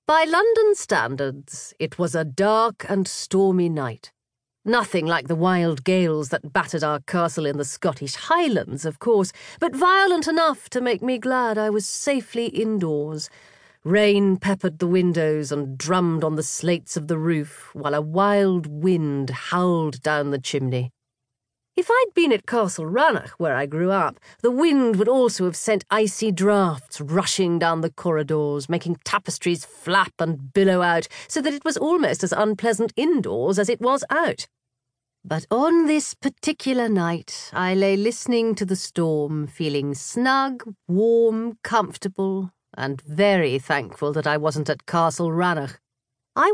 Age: 40-59